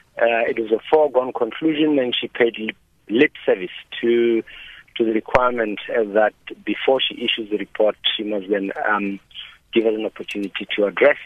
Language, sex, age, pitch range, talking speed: English, male, 50-69, 110-135 Hz, 170 wpm